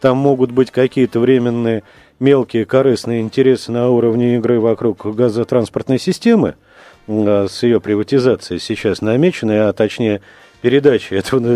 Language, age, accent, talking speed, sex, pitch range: Russian, 40-59, native, 120 wpm, male, 110-145 Hz